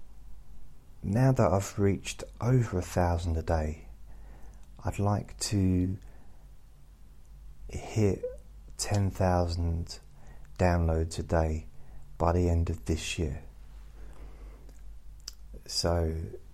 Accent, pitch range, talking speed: British, 75-95 Hz, 85 wpm